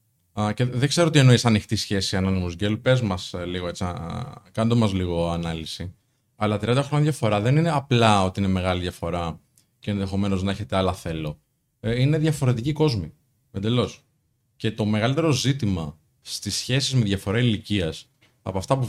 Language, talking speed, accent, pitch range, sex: Greek, 155 wpm, native, 105-140 Hz, male